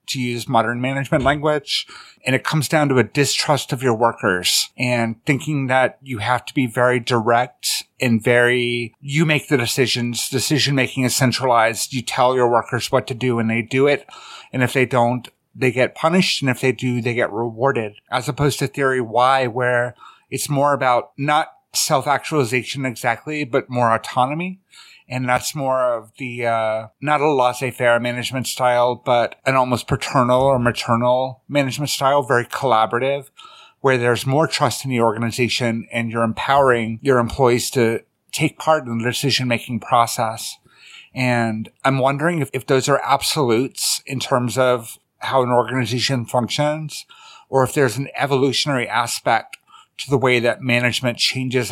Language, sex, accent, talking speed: English, male, American, 165 wpm